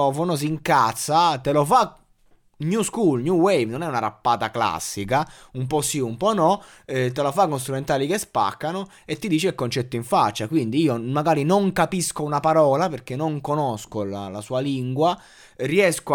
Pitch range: 120-160 Hz